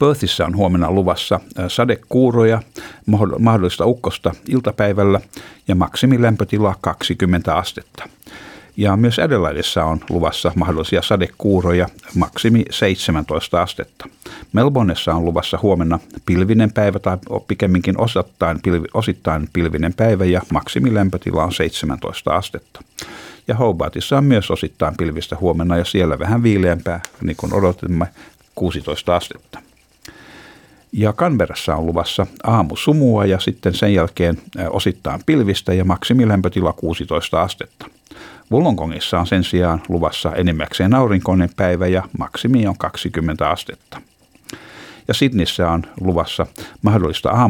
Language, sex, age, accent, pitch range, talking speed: Finnish, male, 60-79, native, 85-105 Hz, 110 wpm